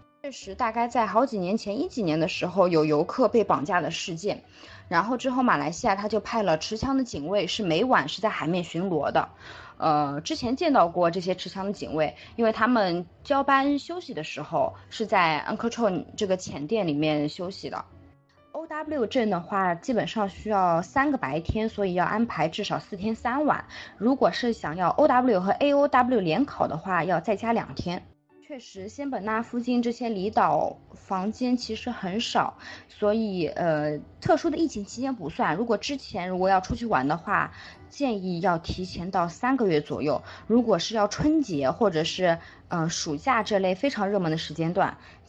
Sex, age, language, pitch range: female, 20-39, Chinese, 175-245 Hz